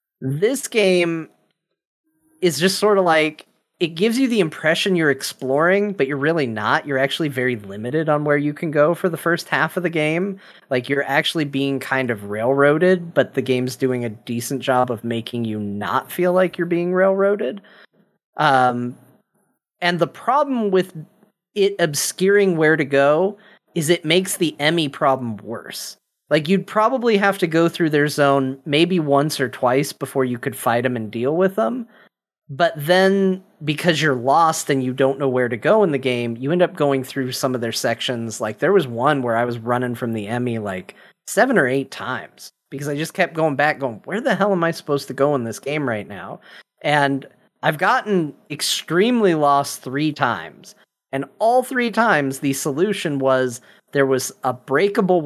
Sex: male